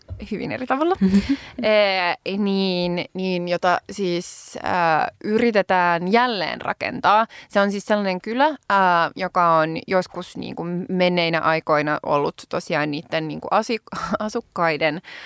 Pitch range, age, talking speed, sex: 170-220 Hz, 20-39, 125 wpm, female